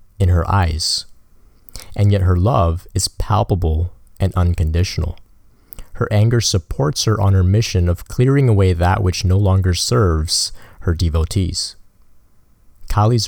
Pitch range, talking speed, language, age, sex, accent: 90-105 Hz, 130 wpm, English, 30-49, male, American